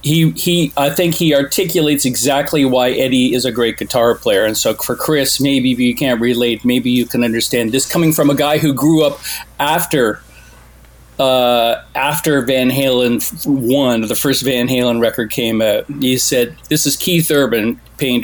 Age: 40-59